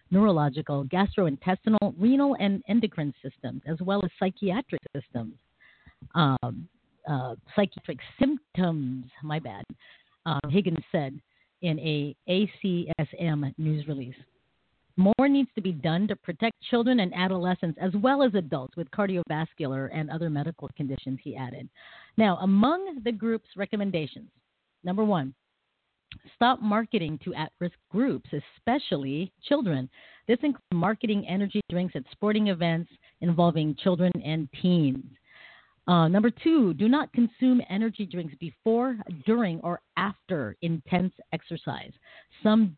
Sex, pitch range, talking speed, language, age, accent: female, 155-215 Hz, 125 wpm, English, 40-59, American